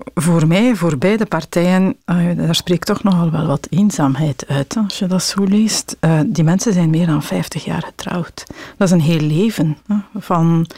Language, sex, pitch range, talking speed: Dutch, female, 160-190 Hz, 180 wpm